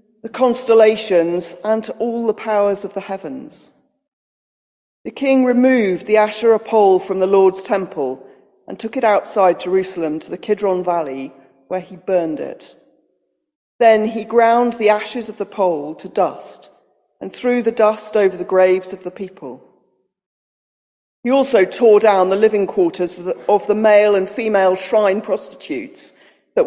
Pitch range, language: 185-230 Hz, English